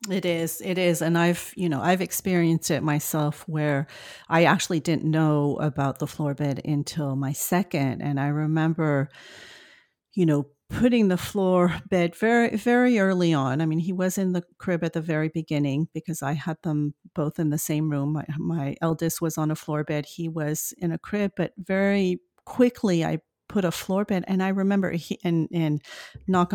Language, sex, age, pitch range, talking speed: English, female, 40-59, 155-185 Hz, 190 wpm